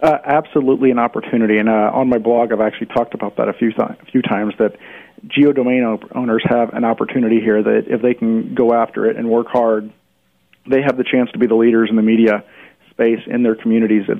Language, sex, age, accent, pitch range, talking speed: English, male, 40-59, American, 110-130 Hz, 230 wpm